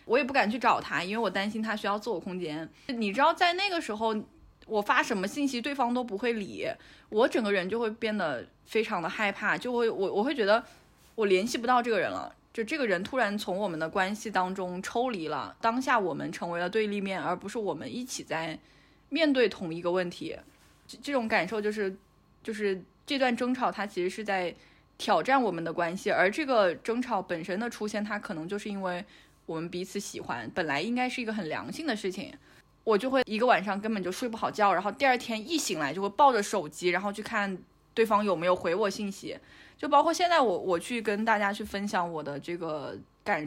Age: 20-39